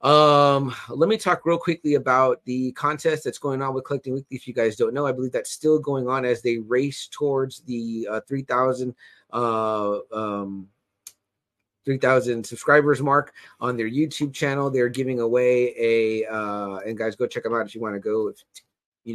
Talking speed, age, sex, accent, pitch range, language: 185 wpm, 30-49, male, American, 115-135 Hz, English